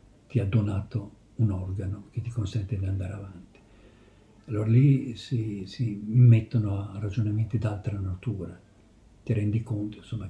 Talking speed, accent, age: 140 wpm, native, 50-69